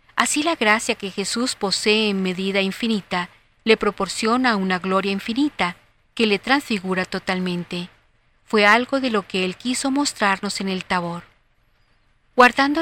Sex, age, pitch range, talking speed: female, 40-59, 180-230 Hz, 140 wpm